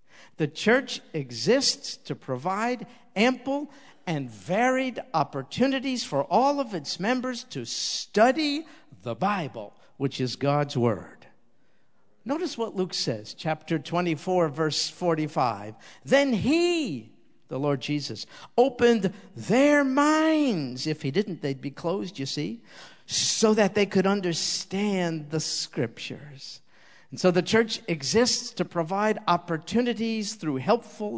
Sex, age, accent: male, 50-69, American